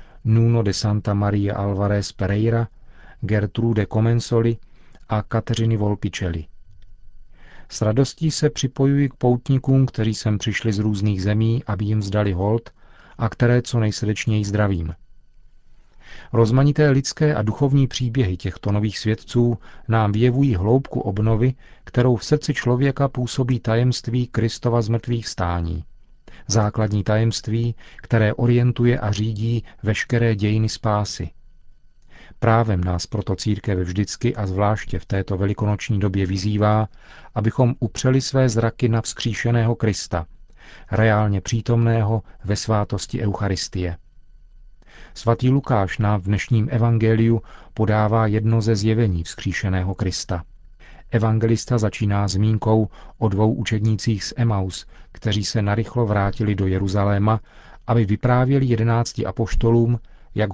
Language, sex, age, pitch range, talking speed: Czech, male, 40-59, 105-120 Hz, 115 wpm